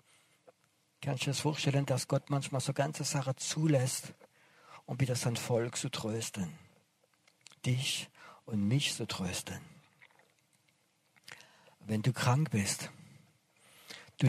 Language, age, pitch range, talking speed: German, 50-69, 110-145 Hz, 115 wpm